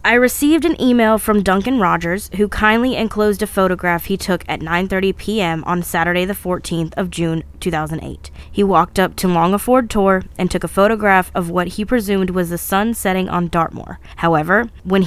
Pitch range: 180-225 Hz